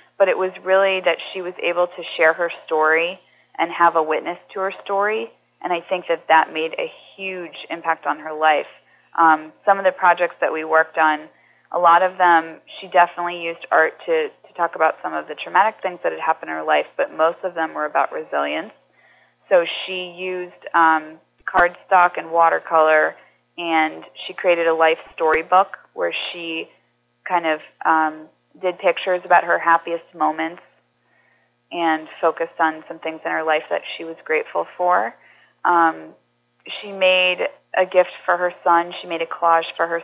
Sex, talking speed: female, 180 wpm